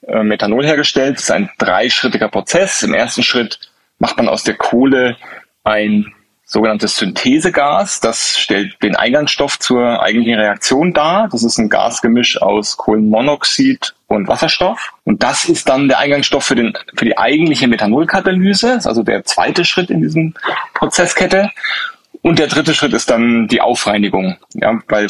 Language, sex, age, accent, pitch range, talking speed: German, male, 30-49, German, 110-155 Hz, 155 wpm